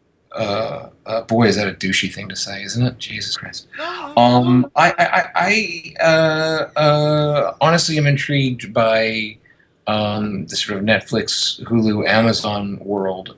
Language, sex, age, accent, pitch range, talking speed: English, male, 30-49, American, 100-125 Hz, 145 wpm